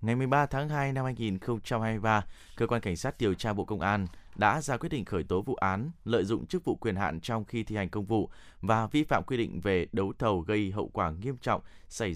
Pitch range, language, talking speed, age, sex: 95-120 Hz, Vietnamese, 240 wpm, 20-39, male